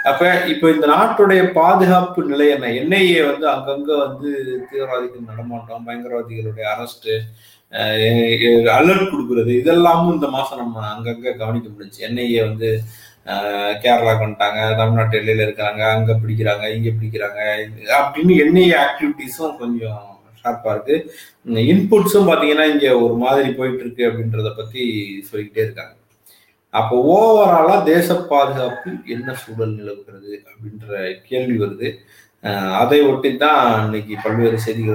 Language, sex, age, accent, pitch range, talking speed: Tamil, male, 30-49, native, 110-155 Hz, 115 wpm